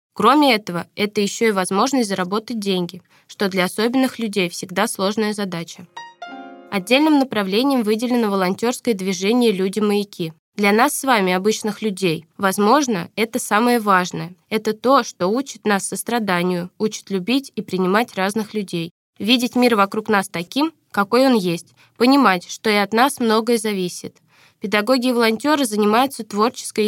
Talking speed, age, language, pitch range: 140 wpm, 20-39, Russian, 190-235 Hz